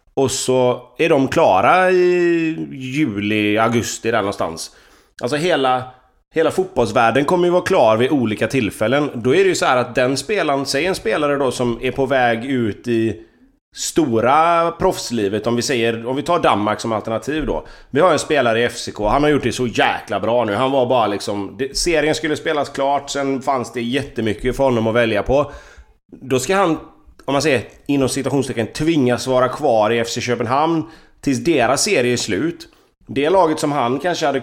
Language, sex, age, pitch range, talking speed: Swedish, male, 30-49, 120-165 Hz, 190 wpm